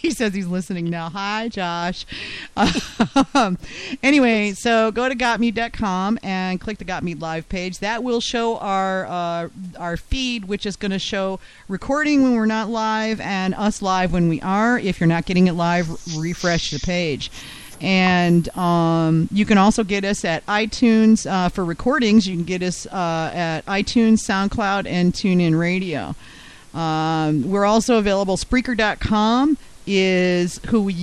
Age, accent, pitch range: 40-59, American, 170-215 Hz